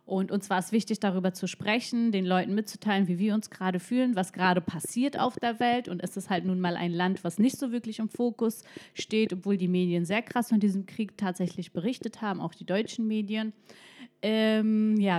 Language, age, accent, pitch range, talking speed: German, 30-49, German, 190-220 Hz, 215 wpm